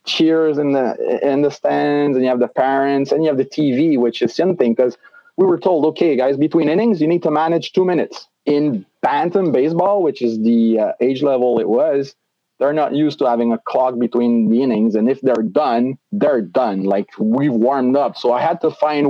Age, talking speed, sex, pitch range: 30-49, 215 wpm, male, 120-160 Hz